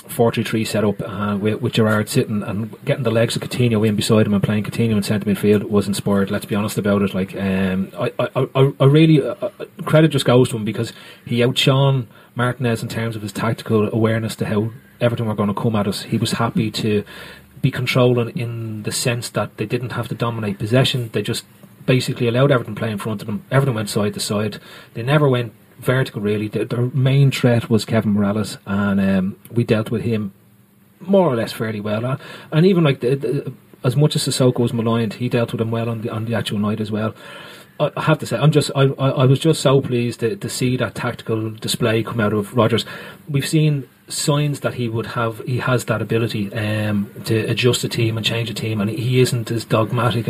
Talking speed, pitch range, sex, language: 225 wpm, 110-130 Hz, male, English